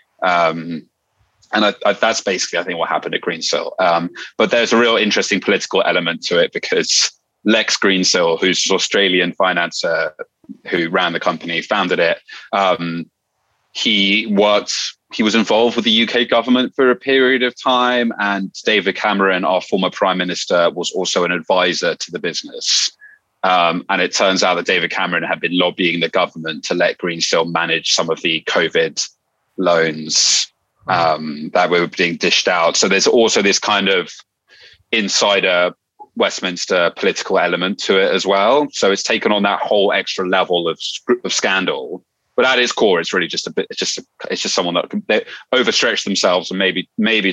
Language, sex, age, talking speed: English, male, 30-49, 175 wpm